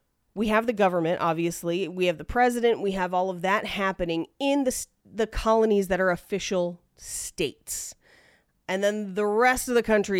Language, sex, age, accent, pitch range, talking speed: English, female, 30-49, American, 175-235 Hz, 175 wpm